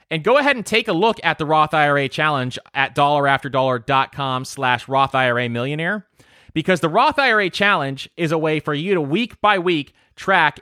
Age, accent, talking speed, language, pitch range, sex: 30-49, American, 185 wpm, English, 130-170 Hz, male